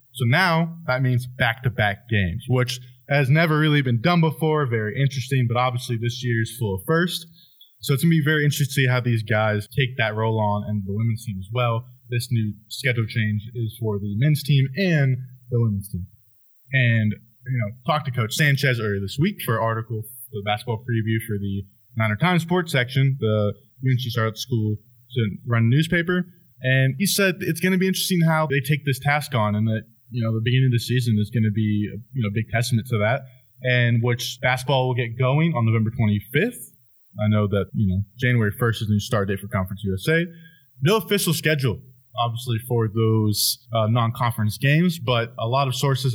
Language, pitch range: English, 110-140 Hz